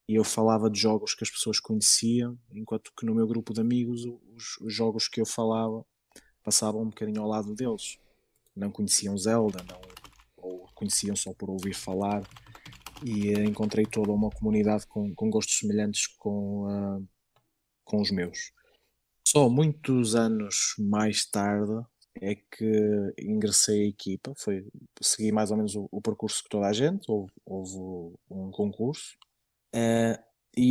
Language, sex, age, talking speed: Portuguese, male, 20-39, 150 wpm